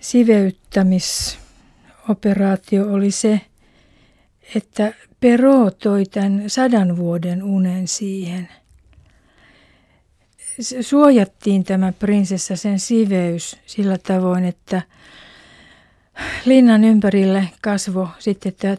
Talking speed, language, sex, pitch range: 75 wpm, Finnish, female, 185-210 Hz